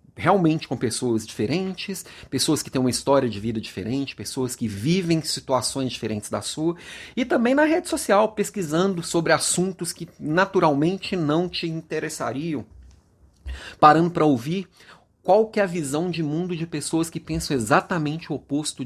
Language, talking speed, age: Portuguese, 155 wpm, 40-59